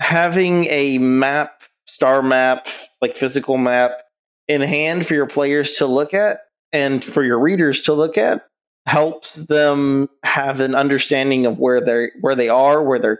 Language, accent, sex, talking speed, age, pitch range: English, American, male, 165 wpm, 20-39, 130-160 Hz